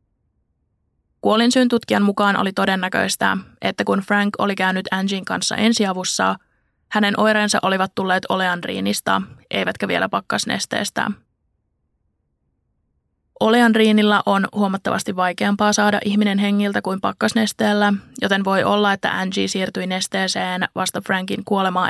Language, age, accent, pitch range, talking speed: Finnish, 20-39, native, 175-205 Hz, 110 wpm